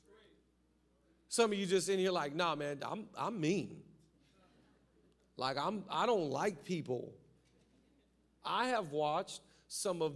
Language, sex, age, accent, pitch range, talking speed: English, male, 40-59, American, 145-210 Hz, 140 wpm